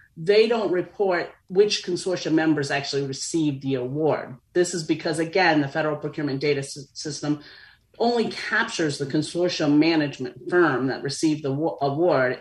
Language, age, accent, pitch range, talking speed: English, 40-59, American, 145-190 Hz, 140 wpm